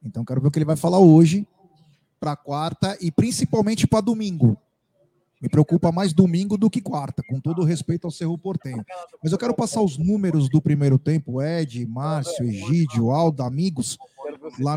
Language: Portuguese